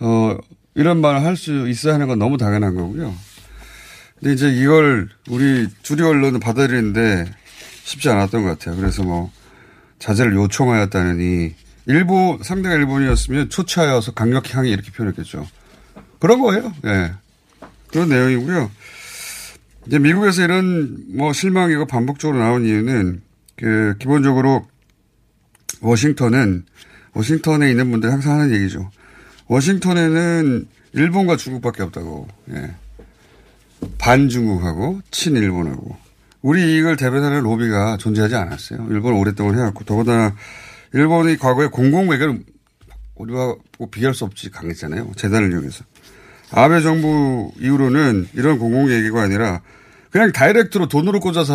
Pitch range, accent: 105-150 Hz, native